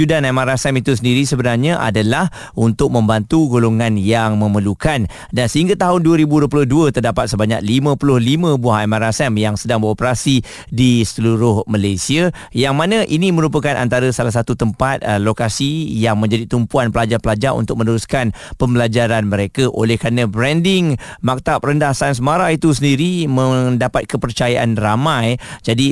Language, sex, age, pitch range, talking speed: Malay, male, 40-59, 115-145 Hz, 130 wpm